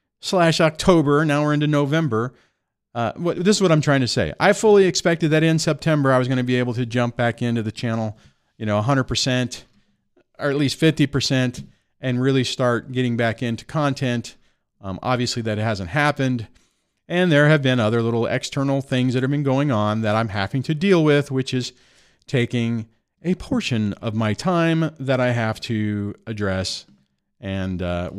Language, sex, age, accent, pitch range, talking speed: English, male, 40-59, American, 110-150 Hz, 180 wpm